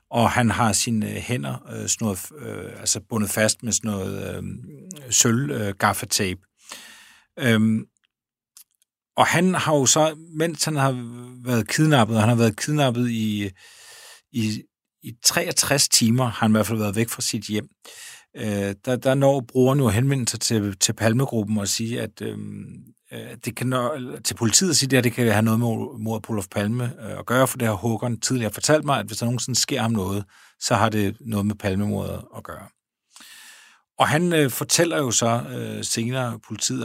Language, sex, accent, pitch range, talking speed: Danish, male, native, 105-125 Hz, 165 wpm